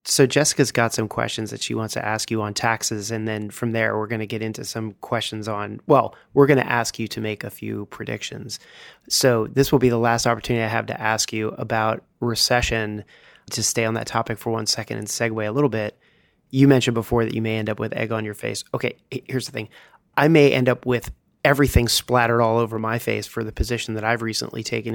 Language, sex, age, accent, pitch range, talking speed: English, male, 30-49, American, 110-125 Hz, 235 wpm